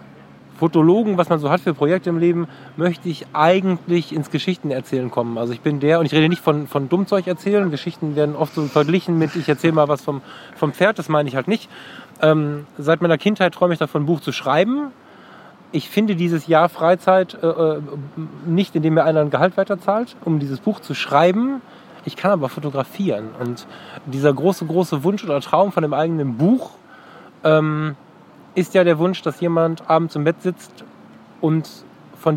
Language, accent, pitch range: German, German, 150-180 Hz